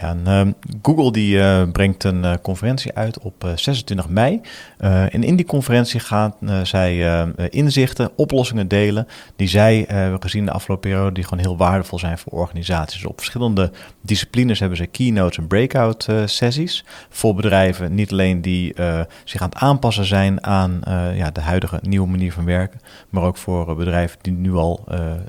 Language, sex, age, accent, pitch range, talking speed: Dutch, male, 40-59, Dutch, 85-110 Hz, 185 wpm